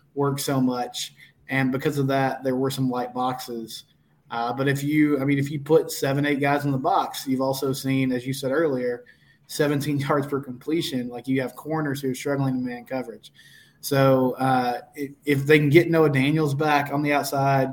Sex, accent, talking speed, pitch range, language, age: male, American, 205 wpm, 130-150 Hz, English, 20-39